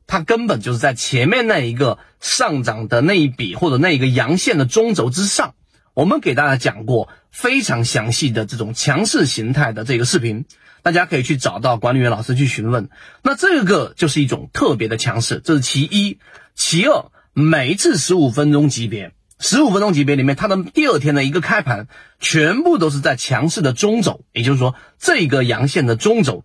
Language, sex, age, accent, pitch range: Chinese, male, 30-49, native, 120-180 Hz